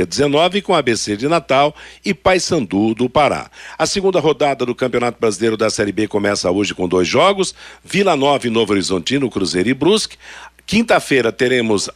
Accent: Brazilian